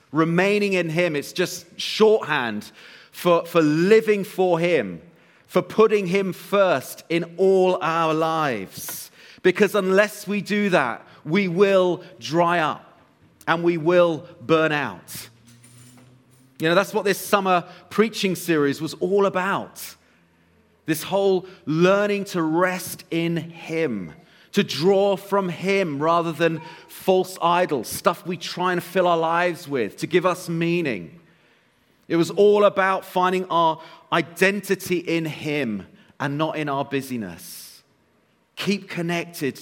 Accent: British